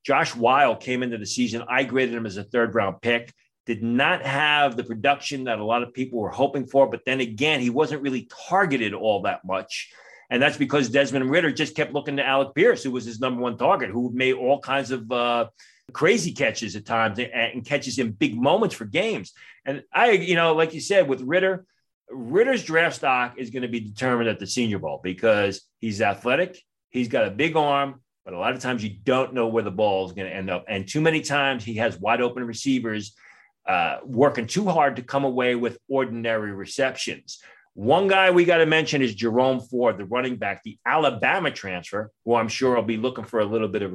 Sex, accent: male, American